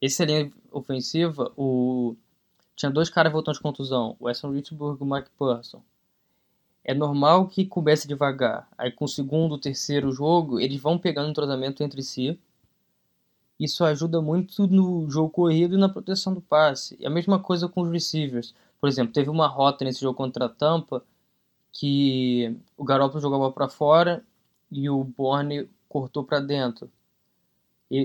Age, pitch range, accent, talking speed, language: 10-29, 135-160 Hz, Brazilian, 165 wpm, Portuguese